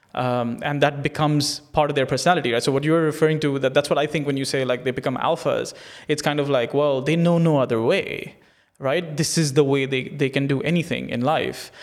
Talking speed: 240 wpm